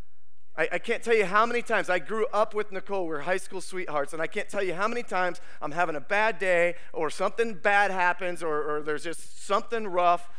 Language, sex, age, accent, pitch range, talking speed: English, male, 30-49, American, 165-215 Hz, 225 wpm